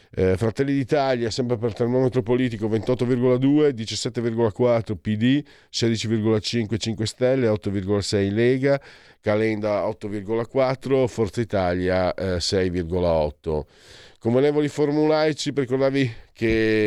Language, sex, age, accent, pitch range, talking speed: Italian, male, 50-69, native, 100-135 Hz, 90 wpm